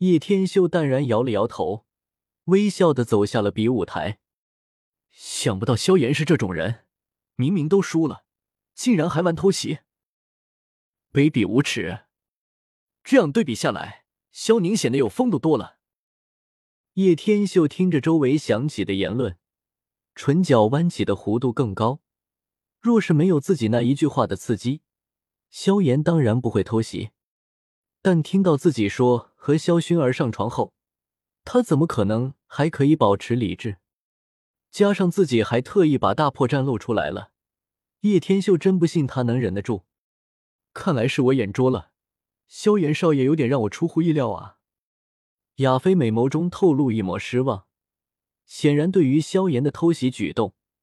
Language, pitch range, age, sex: Chinese, 110-175 Hz, 20-39, male